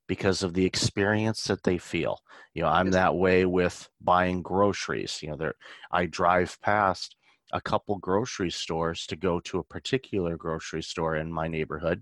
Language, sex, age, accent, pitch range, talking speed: English, male, 30-49, American, 85-95 Hz, 175 wpm